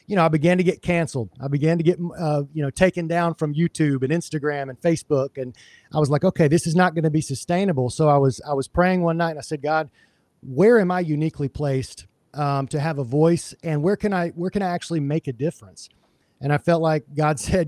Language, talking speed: English, 250 wpm